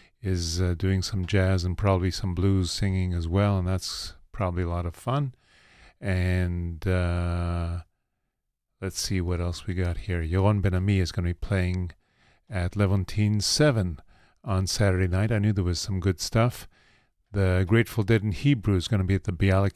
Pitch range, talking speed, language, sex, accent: 90-110 Hz, 180 wpm, English, male, American